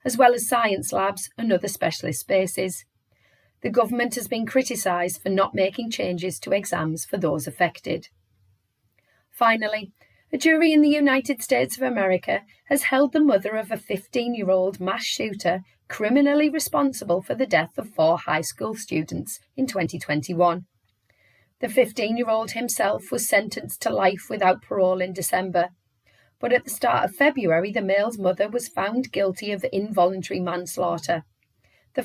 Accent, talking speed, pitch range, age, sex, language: British, 150 wpm, 175-240 Hz, 30-49, female, English